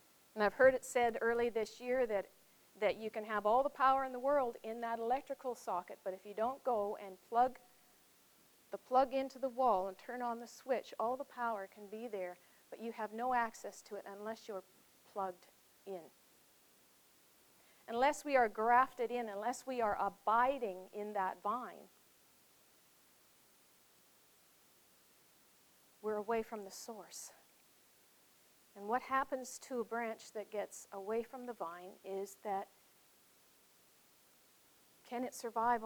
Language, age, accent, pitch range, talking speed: English, 50-69, American, 205-250 Hz, 150 wpm